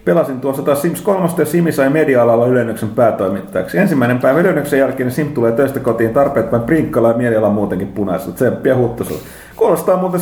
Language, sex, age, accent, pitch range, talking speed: Finnish, male, 30-49, native, 115-150 Hz, 175 wpm